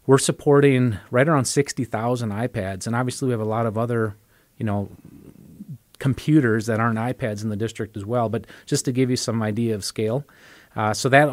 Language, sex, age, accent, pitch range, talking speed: English, male, 30-49, American, 110-130 Hz, 195 wpm